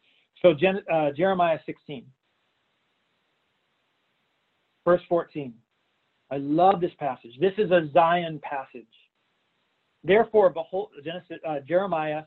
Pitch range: 145-185 Hz